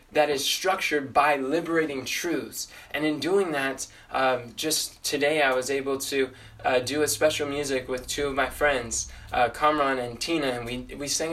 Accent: American